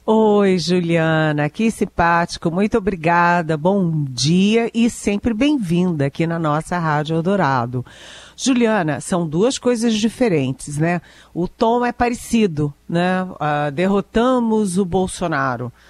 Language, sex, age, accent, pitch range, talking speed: Portuguese, female, 50-69, Brazilian, 160-215 Hz, 115 wpm